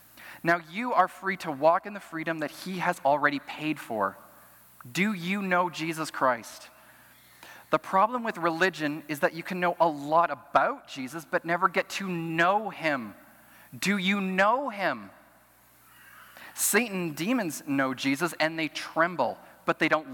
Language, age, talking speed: English, 30-49, 160 wpm